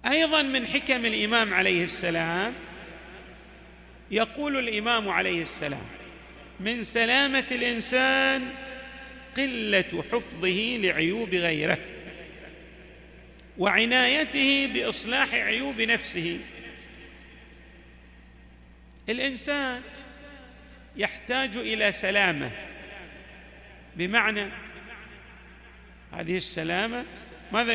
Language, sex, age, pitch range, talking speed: Arabic, male, 50-69, 165-255 Hz, 65 wpm